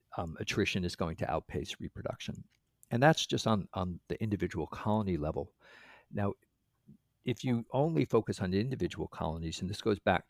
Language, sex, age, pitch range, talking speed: English, male, 50-69, 85-105 Hz, 170 wpm